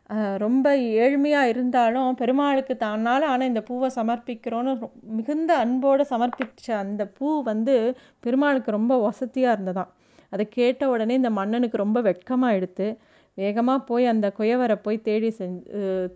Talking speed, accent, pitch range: 120 wpm, native, 210-260 Hz